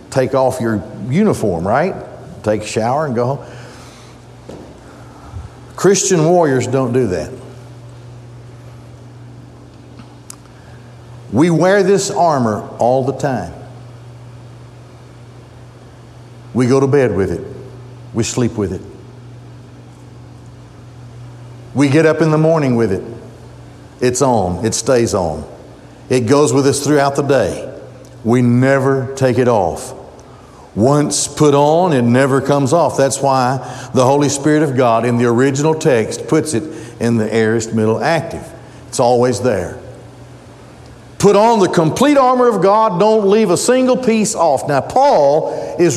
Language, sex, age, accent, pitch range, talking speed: English, male, 60-79, American, 120-145 Hz, 135 wpm